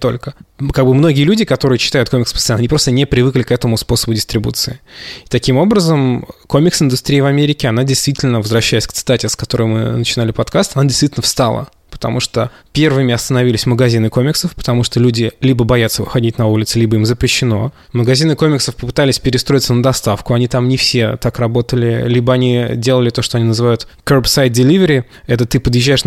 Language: Russian